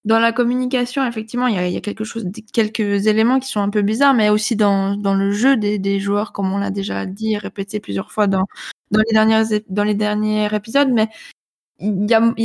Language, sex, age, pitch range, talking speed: French, female, 20-39, 205-250 Hz, 225 wpm